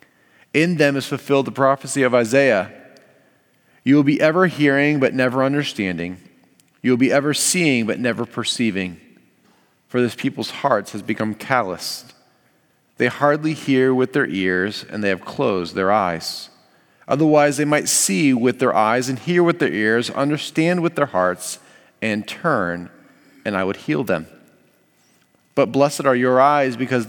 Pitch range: 110-145 Hz